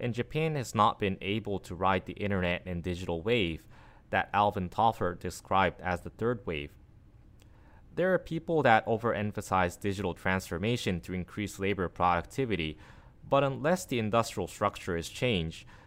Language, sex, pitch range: English, male, 90-115 Hz